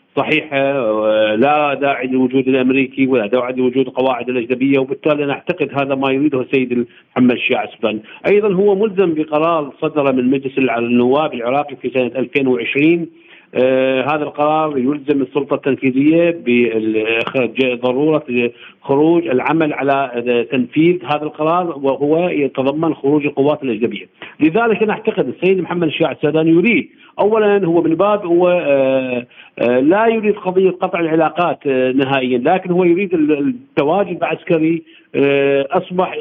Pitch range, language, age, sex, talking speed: 135-180 Hz, Arabic, 50-69, male, 125 wpm